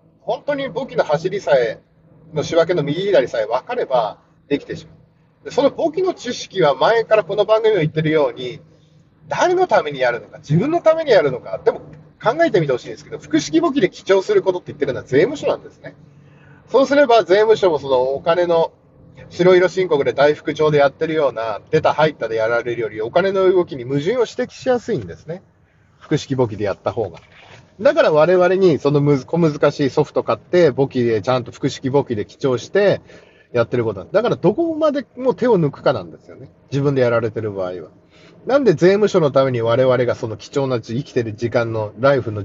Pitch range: 125-185 Hz